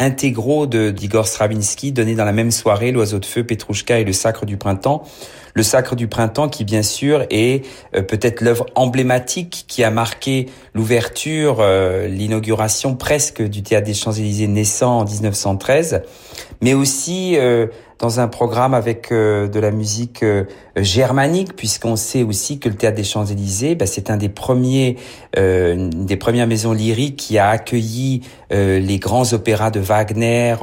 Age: 40-59